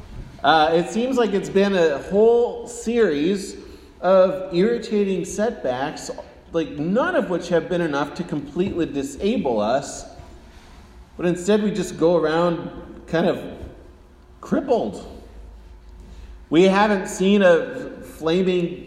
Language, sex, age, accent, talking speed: English, male, 40-59, American, 120 wpm